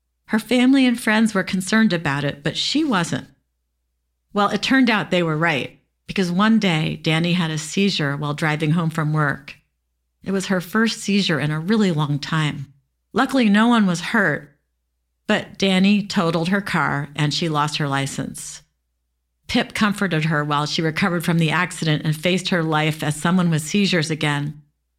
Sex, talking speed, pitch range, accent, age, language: female, 175 wpm, 150-200 Hz, American, 50-69, English